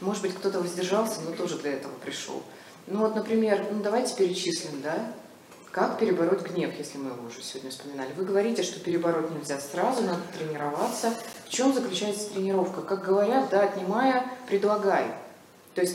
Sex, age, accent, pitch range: female, 20-39, native, 155-205 Hz